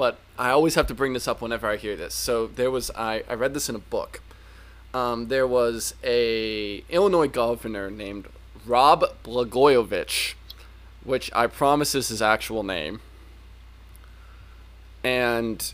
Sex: male